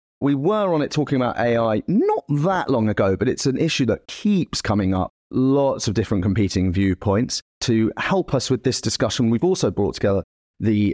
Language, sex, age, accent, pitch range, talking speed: English, male, 30-49, British, 100-135 Hz, 190 wpm